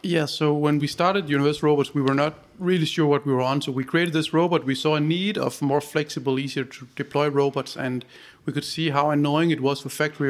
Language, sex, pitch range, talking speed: Danish, male, 135-155 Hz, 245 wpm